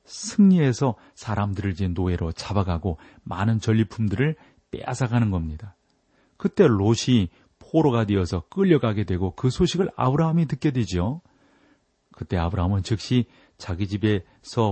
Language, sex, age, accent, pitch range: Korean, male, 40-59, native, 100-130 Hz